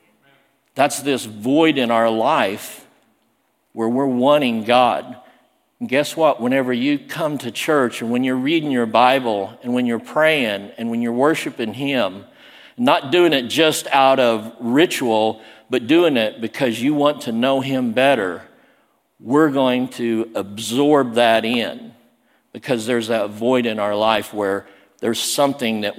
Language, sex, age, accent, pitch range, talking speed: English, male, 50-69, American, 115-140 Hz, 155 wpm